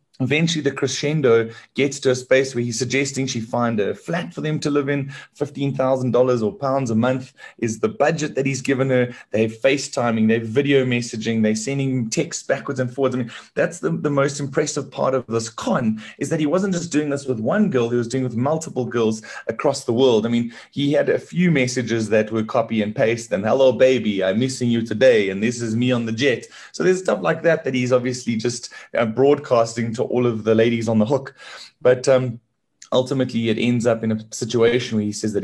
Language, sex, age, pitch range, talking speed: English, male, 30-49, 115-140 Hz, 225 wpm